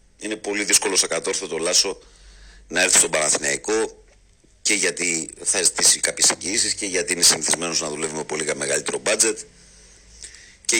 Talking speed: 150 wpm